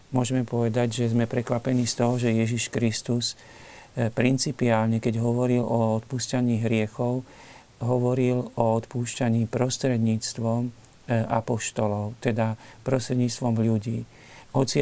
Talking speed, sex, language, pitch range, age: 100 wpm, male, Slovak, 115-135 Hz, 50-69